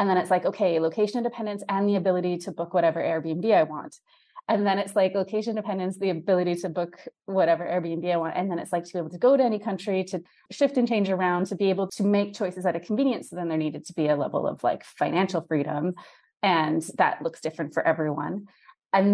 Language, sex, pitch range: English, female, 165-205 Hz